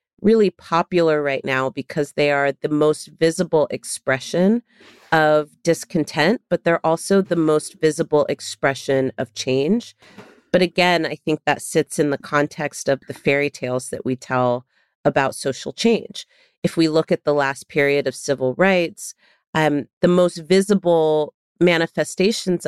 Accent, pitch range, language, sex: American, 145-180 Hz, English, female